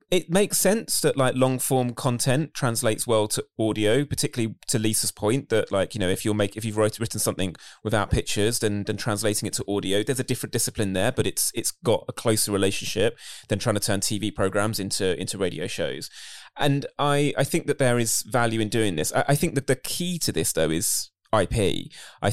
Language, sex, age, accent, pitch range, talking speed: English, male, 20-39, British, 95-120 Hz, 220 wpm